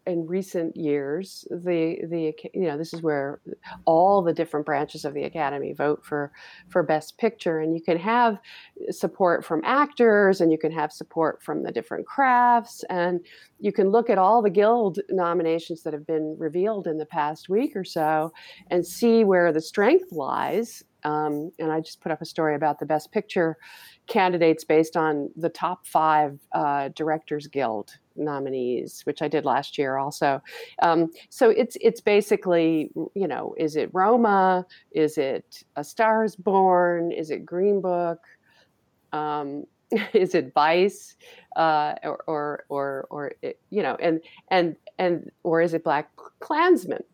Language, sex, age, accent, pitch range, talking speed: English, female, 40-59, American, 155-200 Hz, 165 wpm